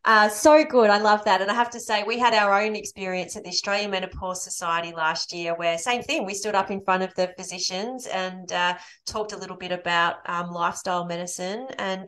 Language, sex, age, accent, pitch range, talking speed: English, female, 30-49, Australian, 170-200 Hz, 225 wpm